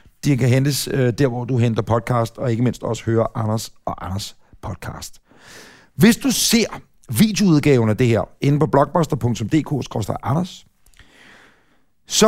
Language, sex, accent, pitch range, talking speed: Danish, male, native, 130-185 Hz, 140 wpm